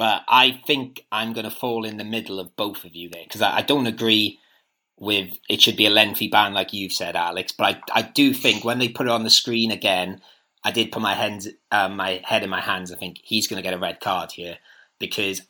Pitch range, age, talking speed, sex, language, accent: 100-130 Hz, 30-49, 245 wpm, male, English, British